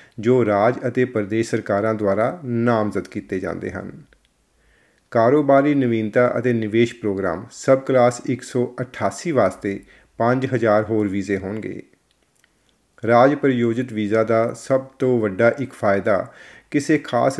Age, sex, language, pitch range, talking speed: 40-59, male, Punjabi, 105-125 Hz, 115 wpm